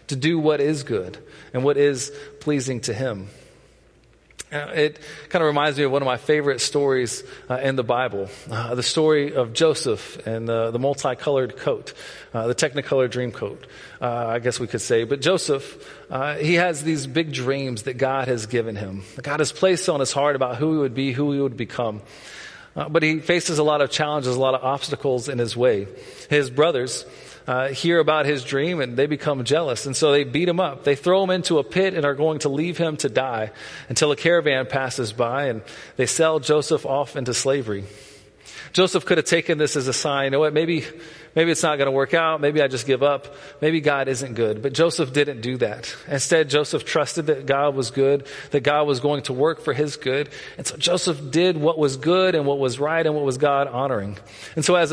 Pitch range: 130-155 Hz